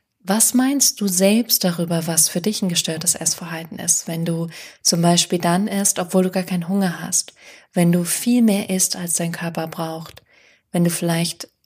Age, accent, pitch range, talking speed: 20-39, German, 175-200 Hz, 185 wpm